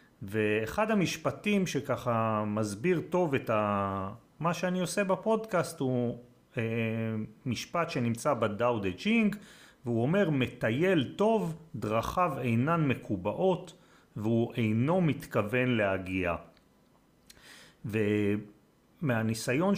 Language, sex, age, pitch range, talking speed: Hebrew, male, 40-59, 115-180 Hz, 80 wpm